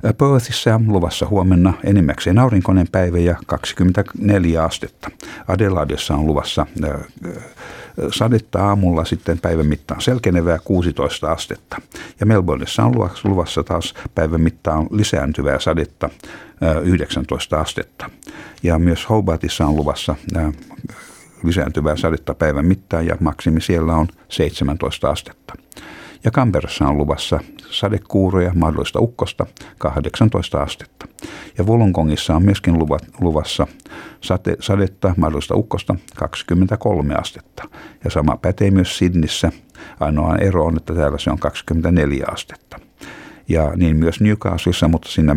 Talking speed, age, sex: 115 wpm, 60-79, male